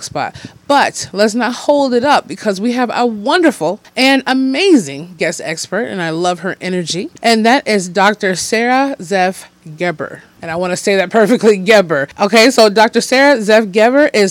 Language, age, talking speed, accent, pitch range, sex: English, 30-49, 180 wpm, American, 180-240 Hz, female